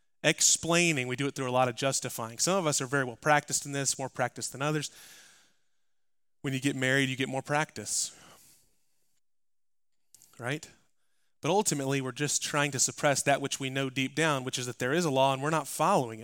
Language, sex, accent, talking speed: English, male, American, 205 wpm